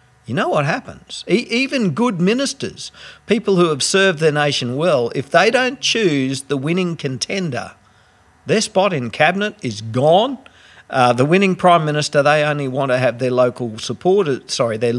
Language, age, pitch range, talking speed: English, 50-69, 115-180 Hz, 170 wpm